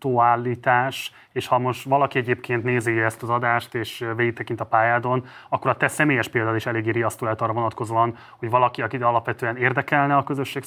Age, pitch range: 30-49, 115-130 Hz